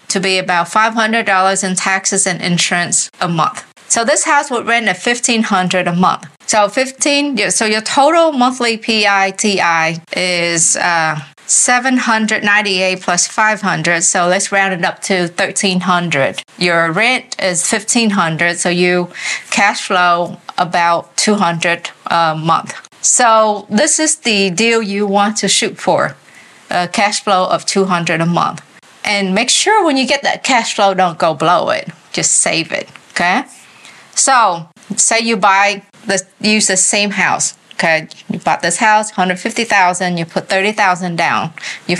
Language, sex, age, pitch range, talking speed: English, female, 20-39, 180-220 Hz, 145 wpm